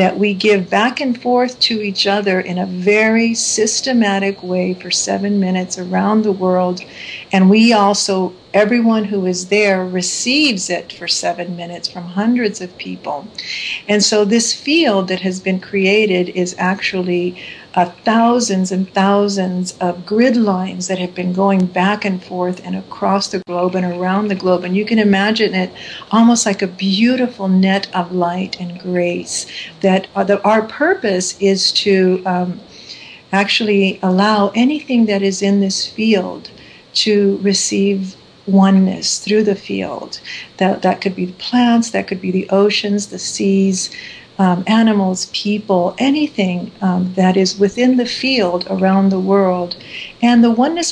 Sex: female